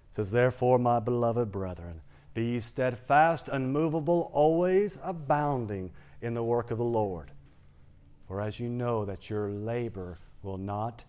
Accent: American